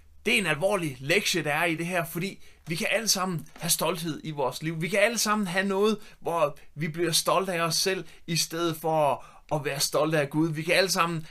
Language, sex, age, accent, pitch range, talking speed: Danish, male, 30-49, native, 155-200 Hz, 240 wpm